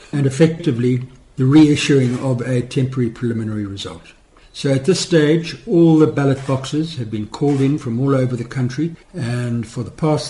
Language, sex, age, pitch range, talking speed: English, male, 60-79, 120-145 Hz, 175 wpm